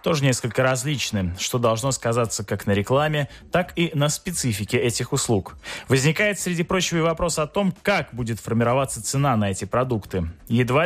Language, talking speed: Russian, 165 wpm